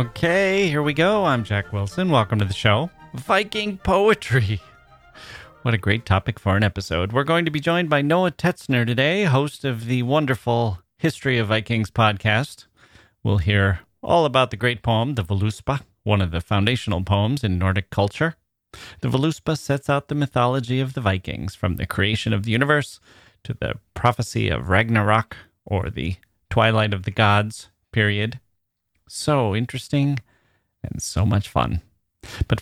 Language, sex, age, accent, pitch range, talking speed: English, male, 30-49, American, 100-135 Hz, 160 wpm